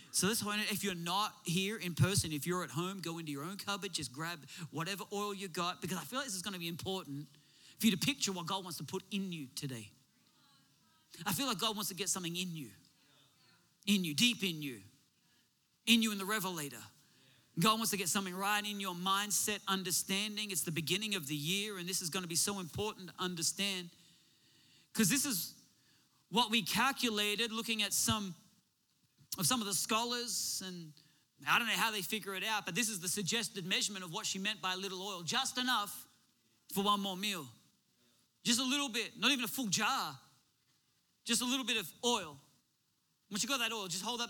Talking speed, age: 210 wpm, 40-59